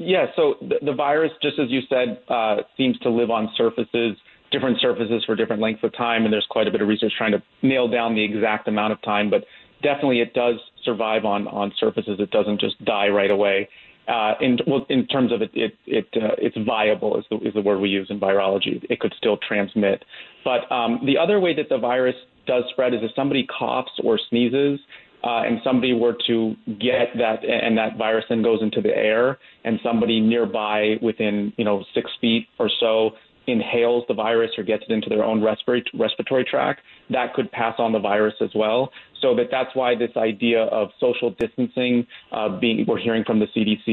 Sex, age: male, 30-49